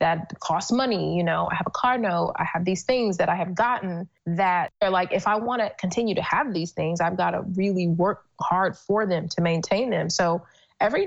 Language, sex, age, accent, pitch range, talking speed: English, female, 20-39, American, 170-205 Hz, 235 wpm